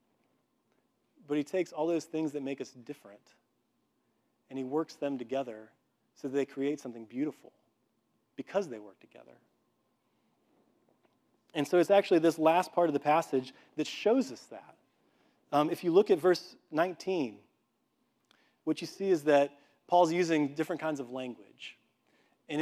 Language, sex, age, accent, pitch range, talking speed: English, male, 30-49, American, 130-160 Hz, 155 wpm